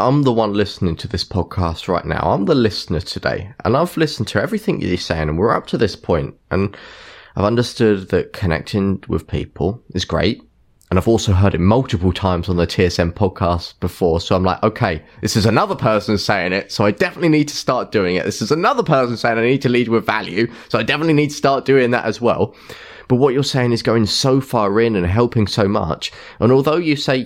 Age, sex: 20-39, male